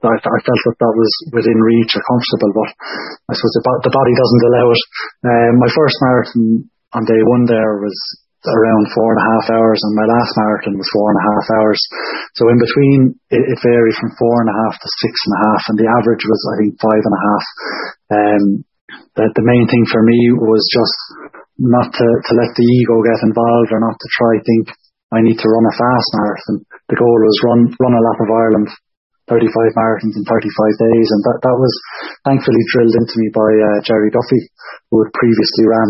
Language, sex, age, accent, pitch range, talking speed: English, male, 20-39, Irish, 110-120 Hz, 215 wpm